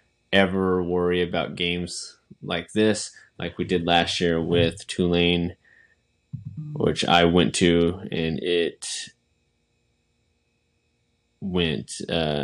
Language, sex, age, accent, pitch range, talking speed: English, male, 20-39, American, 85-100 Hz, 95 wpm